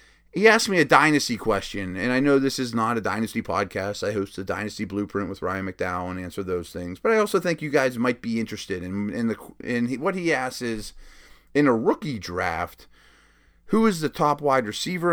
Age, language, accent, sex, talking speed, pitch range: 30-49, English, American, male, 220 wpm, 95-125 Hz